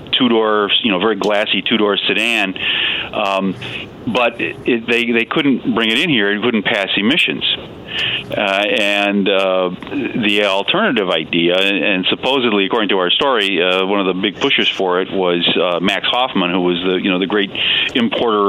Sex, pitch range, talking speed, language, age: male, 95-110 Hz, 185 wpm, English, 40-59